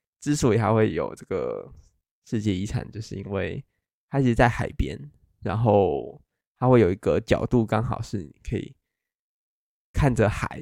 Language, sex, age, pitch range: Chinese, male, 20-39, 105-125 Hz